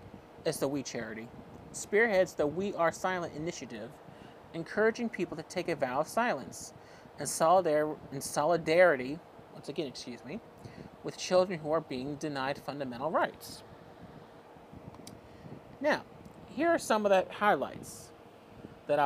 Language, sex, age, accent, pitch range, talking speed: English, male, 40-59, American, 150-200 Hz, 135 wpm